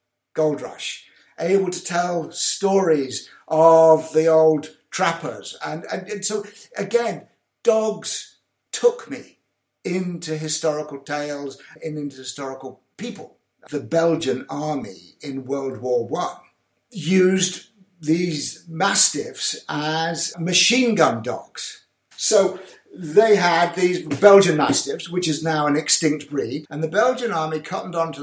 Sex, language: male, English